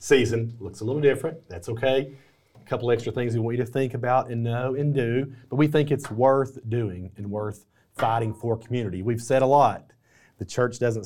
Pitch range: 105-130 Hz